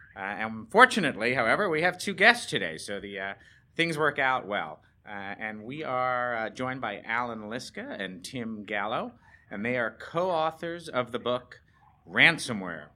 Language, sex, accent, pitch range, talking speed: English, male, American, 105-135 Hz, 160 wpm